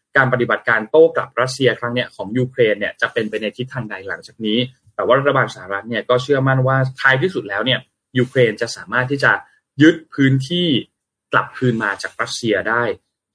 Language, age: Thai, 20-39